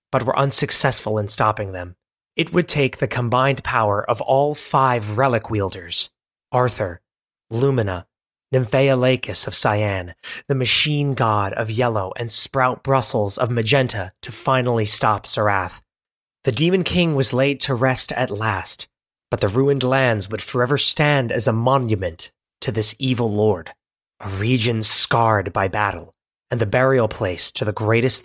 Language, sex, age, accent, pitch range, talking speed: English, male, 30-49, American, 105-135 Hz, 150 wpm